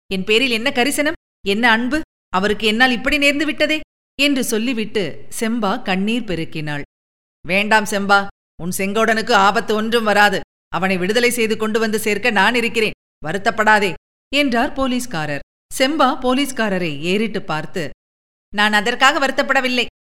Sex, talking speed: female, 125 wpm